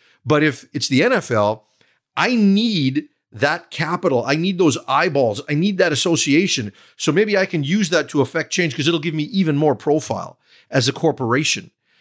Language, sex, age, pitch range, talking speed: English, male, 40-59, 130-170 Hz, 180 wpm